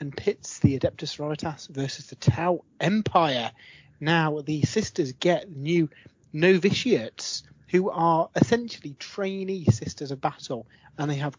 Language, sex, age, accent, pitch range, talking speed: English, male, 30-49, British, 140-180 Hz, 130 wpm